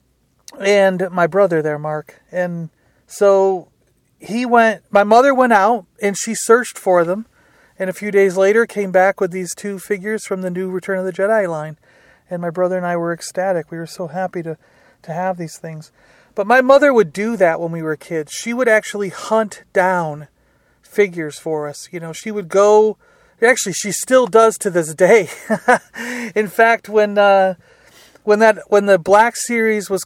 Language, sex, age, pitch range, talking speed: English, male, 40-59, 170-210 Hz, 190 wpm